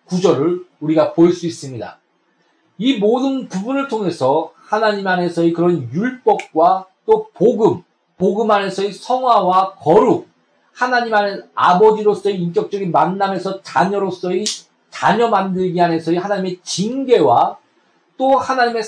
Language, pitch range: Korean, 170-220 Hz